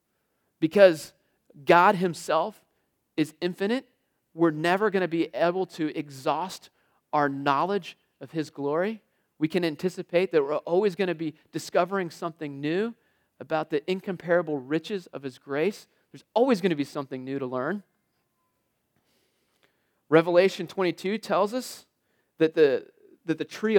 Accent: American